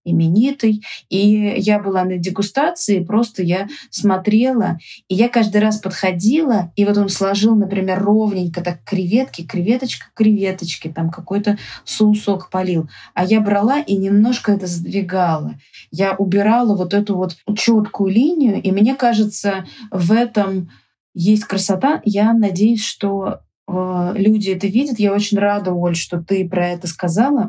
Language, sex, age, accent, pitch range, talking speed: Russian, female, 20-39, native, 185-215 Hz, 140 wpm